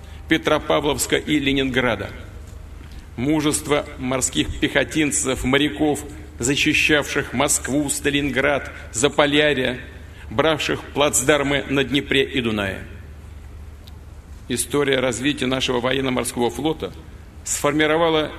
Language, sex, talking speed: Russian, male, 75 wpm